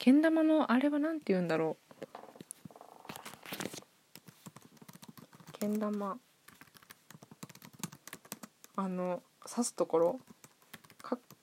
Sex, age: female, 20-39